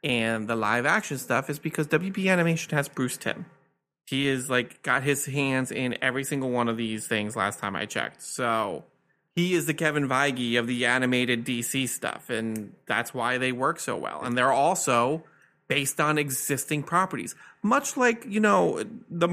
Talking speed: 180 wpm